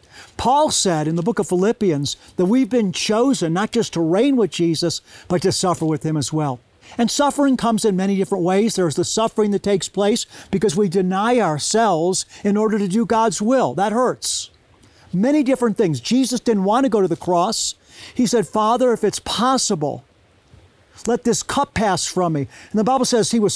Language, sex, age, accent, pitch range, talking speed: English, male, 50-69, American, 175-235 Hz, 200 wpm